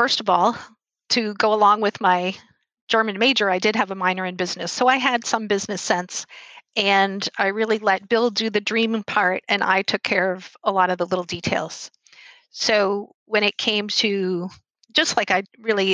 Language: English